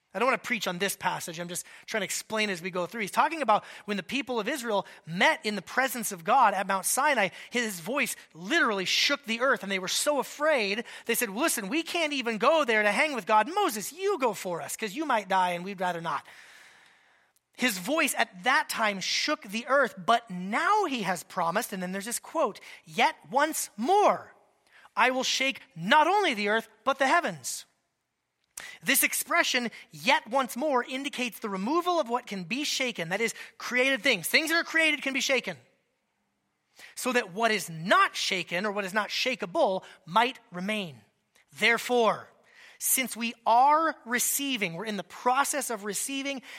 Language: English